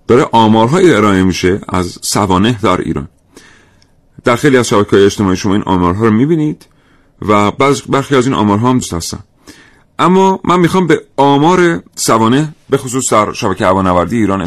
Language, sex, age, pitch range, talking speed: Persian, male, 40-59, 100-140 Hz, 160 wpm